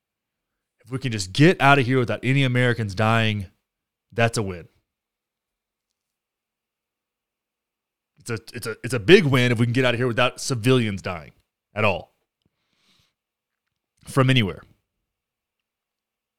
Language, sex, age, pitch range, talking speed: English, male, 20-39, 95-130 Hz, 125 wpm